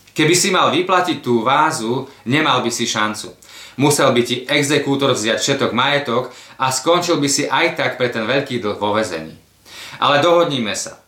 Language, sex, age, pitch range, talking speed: Slovak, male, 30-49, 115-150 Hz, 175 wpm